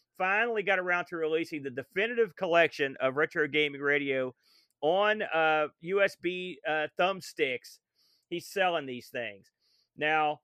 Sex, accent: male, American